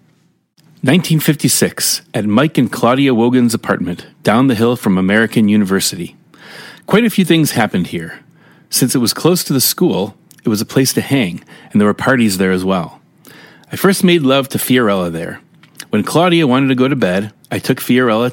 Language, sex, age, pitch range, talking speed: English, male, 30-49, 100-145 Hz, 185 wpm